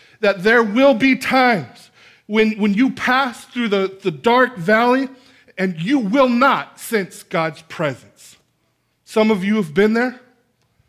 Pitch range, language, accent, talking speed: 150-235 Hz, English, American, 150 wpm